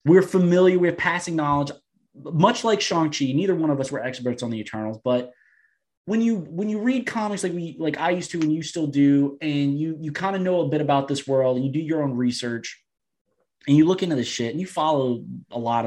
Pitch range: 140-185 Hz